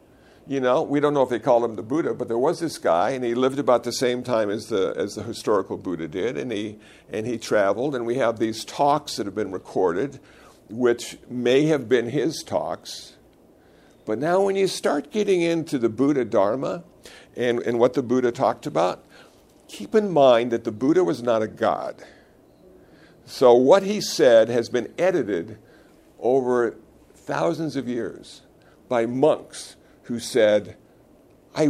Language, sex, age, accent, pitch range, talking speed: English, male, 60-79, American, 120-165 Hz, 175 wpm